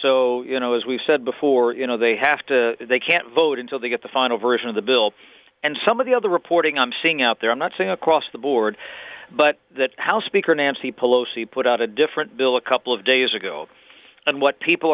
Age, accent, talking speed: 50-69, American, 235 wpm